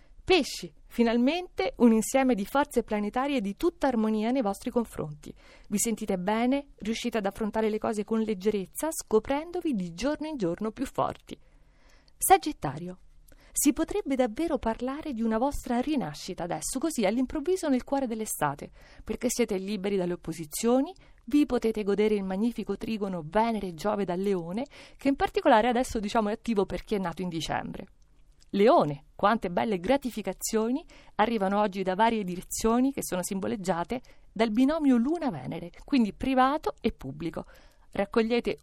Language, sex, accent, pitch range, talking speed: Italian, female, native, 200-270 Hz, 145 wpm